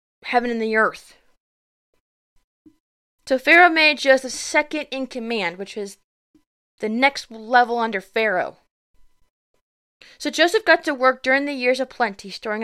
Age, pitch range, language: 20-39, 205-270 Hz, English